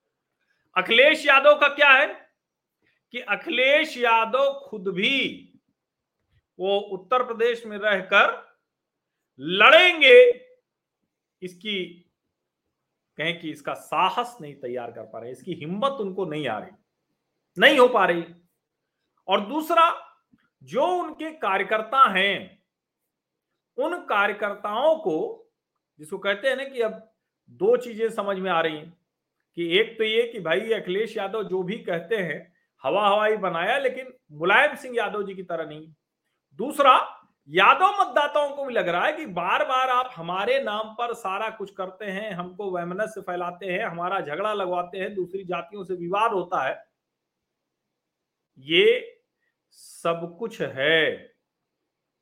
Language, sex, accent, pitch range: Hindi, male, native, 180-275 Hz